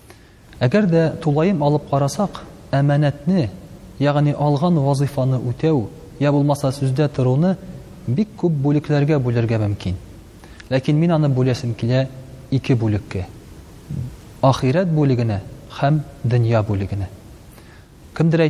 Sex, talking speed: male, 45 wpm